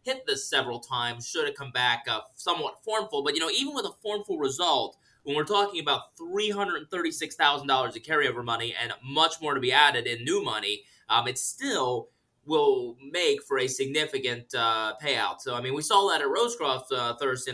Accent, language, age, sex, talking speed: American, English, 20-39, male, 190 wpm